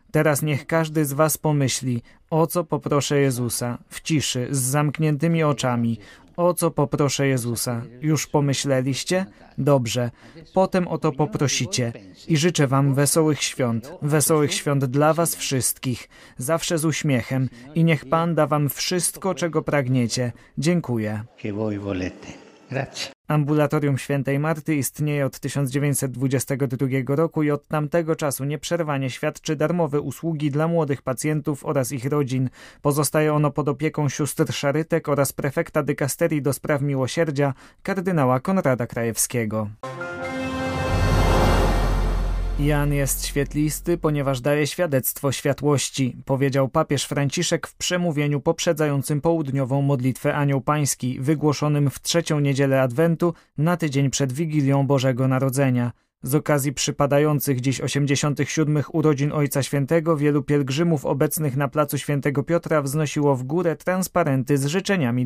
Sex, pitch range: male, 130-155 Hz